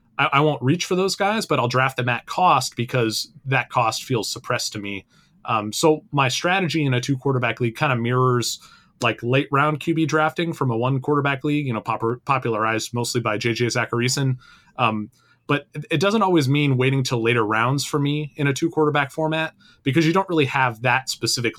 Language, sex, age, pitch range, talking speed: English, male, 30-49, 120-150 Hz, 195 wpm